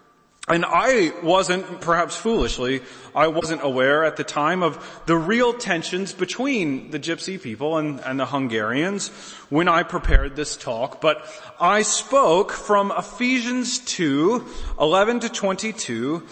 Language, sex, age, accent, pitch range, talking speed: English, male, 30-49, American, 130-215 Hz, 135 wpm